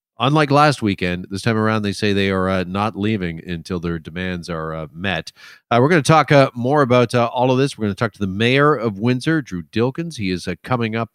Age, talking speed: 40-59, 255 wpm